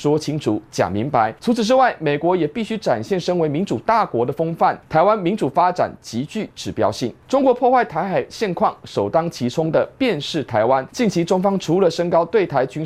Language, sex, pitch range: Chinese, male, 150-225 Hz